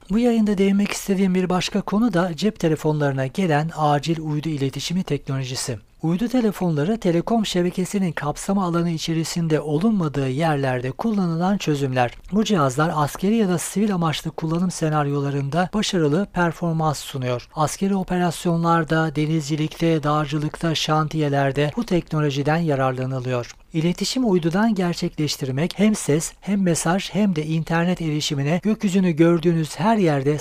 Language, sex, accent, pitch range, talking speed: Turkish, male, native, 145-185 Hz, 120 wpm